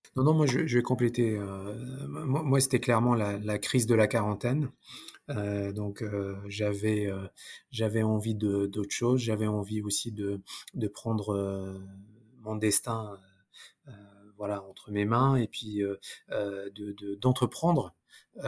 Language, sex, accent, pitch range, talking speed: French, male, French, 100-125 Hz, 155 wpm